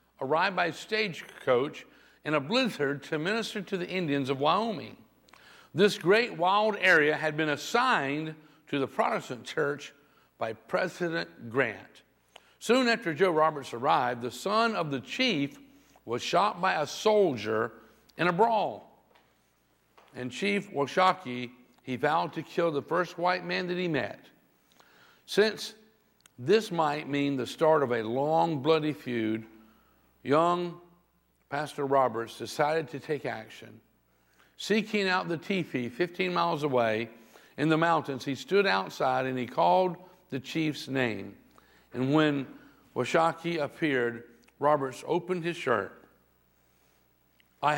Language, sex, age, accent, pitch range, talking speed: English, male, 60-79, American, 125-180 Hz, 130 wpm